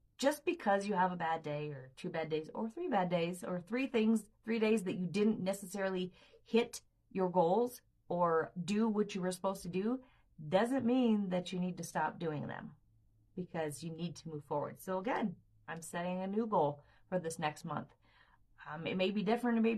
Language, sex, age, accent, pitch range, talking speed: English, female, 30-49, American, 170-210 Hz, 205 wpm